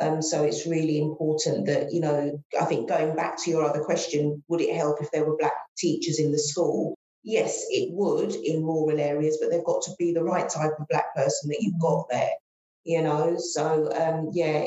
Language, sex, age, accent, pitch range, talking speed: English, female, 40-59, British, 155-170 Hz, 215 wpm